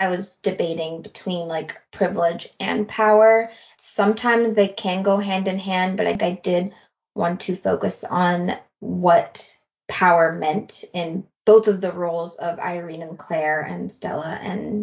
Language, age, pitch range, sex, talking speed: English, 20-39, 170-210 Hz, female, 155 wpm